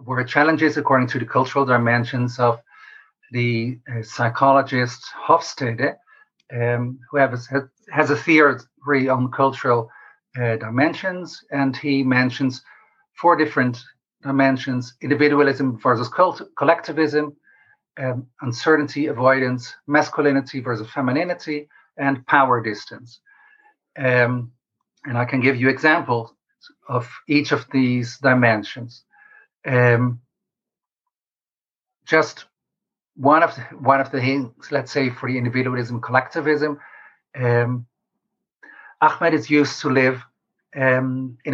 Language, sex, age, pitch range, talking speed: English, male, 50-69, 125-150 Hz, 110 wpm